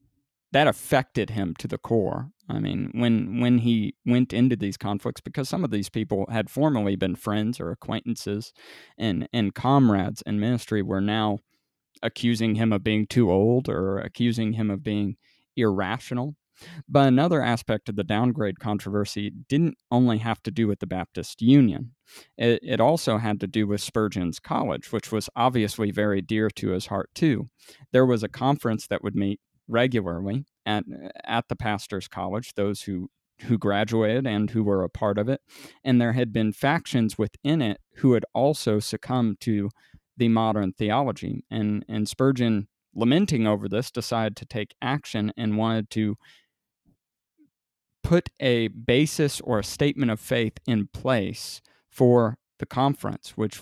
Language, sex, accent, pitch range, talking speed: English, male, American, 105-125 Hz, 160 wpm